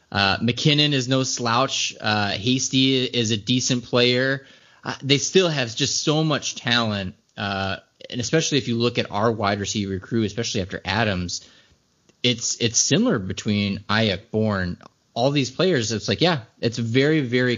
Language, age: English, 20-39